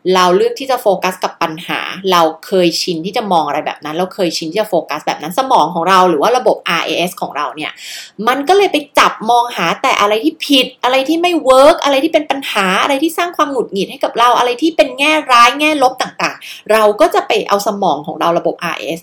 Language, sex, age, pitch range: Thai, female, 20-39, 180-270 Hz